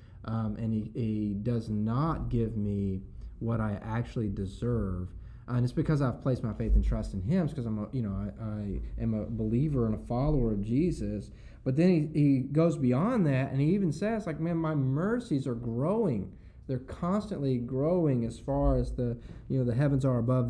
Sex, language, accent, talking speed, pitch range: male, English, American, 200 wpm, 105-130 Hz